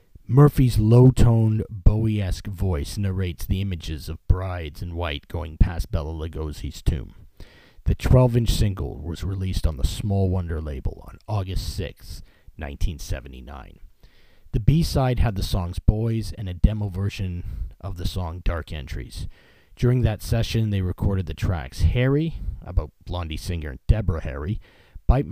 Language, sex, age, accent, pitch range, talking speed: English, male, 40-59, American, 85-110 Hz, 140 wpm